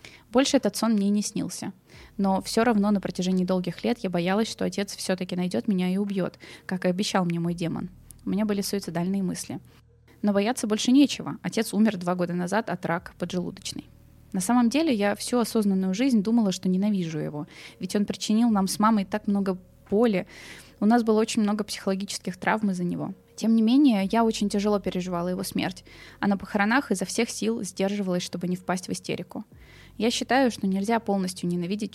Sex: female